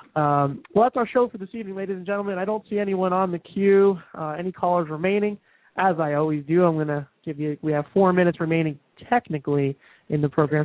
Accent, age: American, 20-39